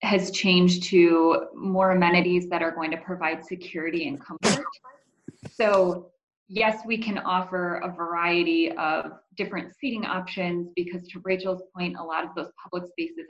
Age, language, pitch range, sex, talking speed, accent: 20-39, English, 170-200 Hz, female, 155 wpm, American